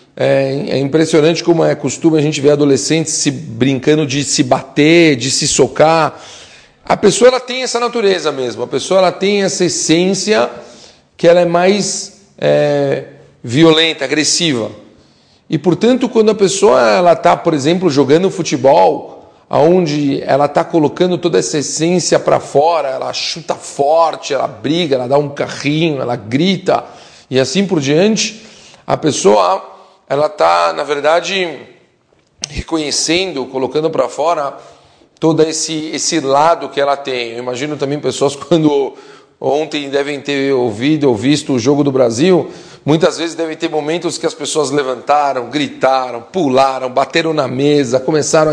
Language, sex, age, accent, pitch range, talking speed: English, male, 40-59, Brazilian, 140-175 Hz, 145 wpm